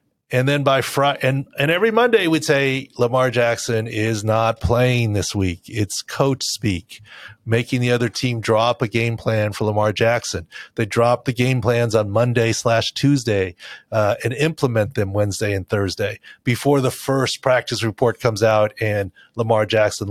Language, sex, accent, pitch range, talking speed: English, male, American, 105-135 Hz, 170 wpm